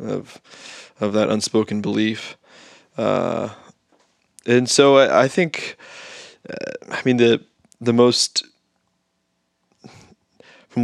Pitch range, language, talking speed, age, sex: 110-130 Hz, English, 100 wpm, 20-39, male